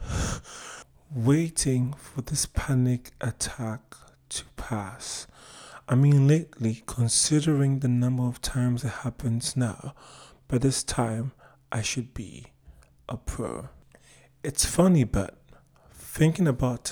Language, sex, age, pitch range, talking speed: English, male, 30-49, 125-155 Hz, 110 wpm